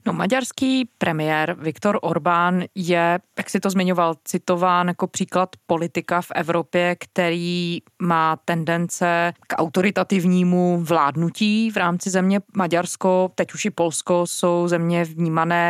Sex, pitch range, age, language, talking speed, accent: female, 165-185 Hz, 20-39, Czech, 120 wpm, native